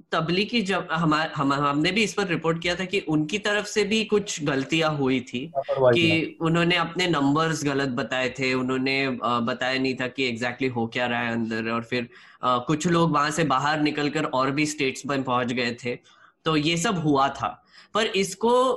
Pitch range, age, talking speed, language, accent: 135-185 Hz, 10-29, 190 wpm, Hindi, native